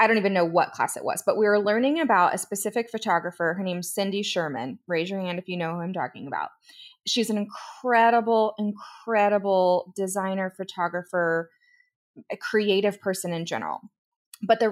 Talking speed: 175 wpm